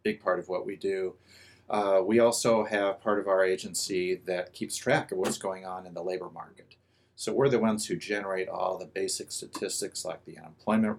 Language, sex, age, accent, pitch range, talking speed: English, male, 40-59, American, 90-110 Hz, 210 wpm